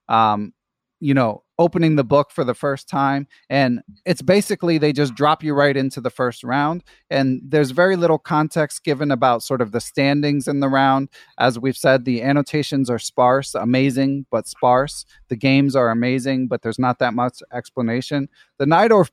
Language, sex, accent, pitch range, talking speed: English, male, American, 130-155 Hz, 180 wpm